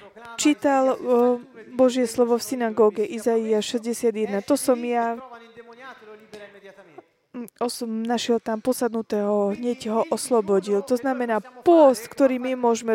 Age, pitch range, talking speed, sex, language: 20-39, 215-265 Hz, 105 wpm, female, Slovak